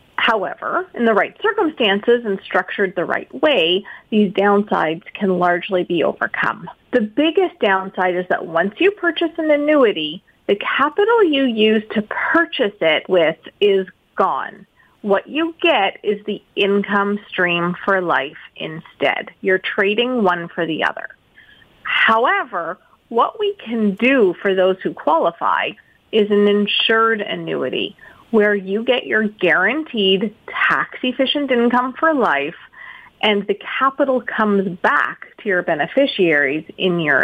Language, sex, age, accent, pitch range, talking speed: English, female, 30-49, American, 190-260 Hz, 135 wpm